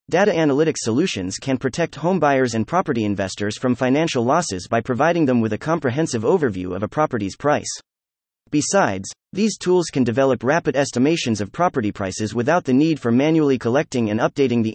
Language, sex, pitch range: English, male, 110-155 Hz